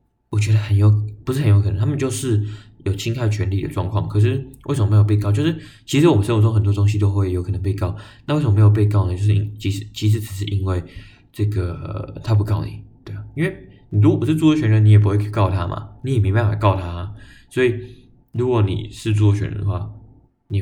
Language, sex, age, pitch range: Chinese, male, 20-39, 105-115 Hz